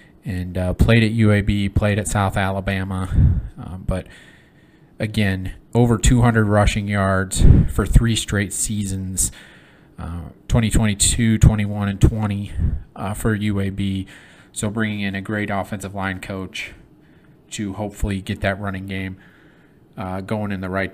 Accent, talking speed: American, 135 wpm